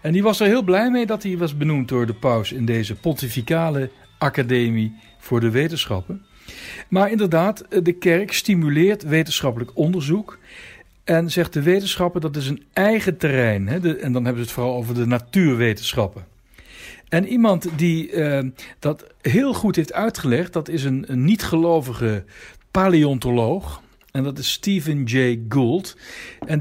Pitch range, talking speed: 120-170 Hz, 160 wpm